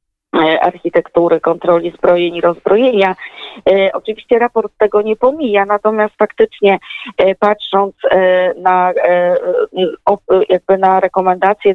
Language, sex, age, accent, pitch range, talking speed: Polish, female, 20-39, native, 175-205 Hz, 85 wpm